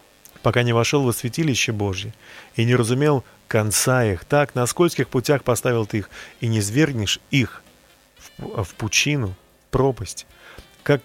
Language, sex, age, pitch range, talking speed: Russian, male, 30-49, 110-150 Hz, 140 wpm